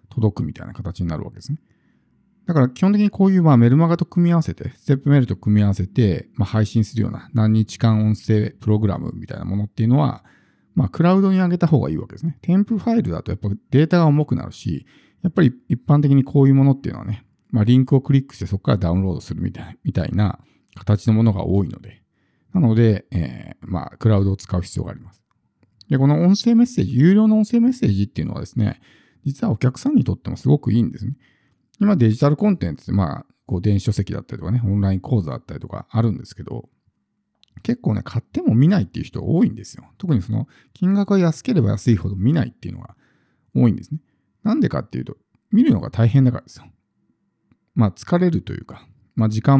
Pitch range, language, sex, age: 105-150 Hz, Japanese, male, 50-69